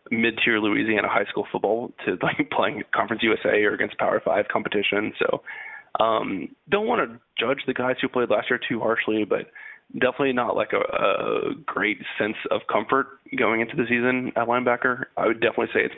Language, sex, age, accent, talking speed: English, male, 20-39, American, 190 wpm